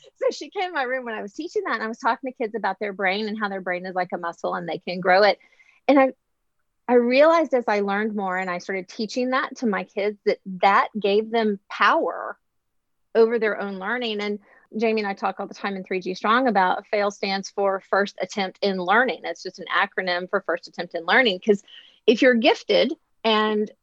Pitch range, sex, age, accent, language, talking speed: 195-255 Hz, female, 30-49, American, English, 225 wpm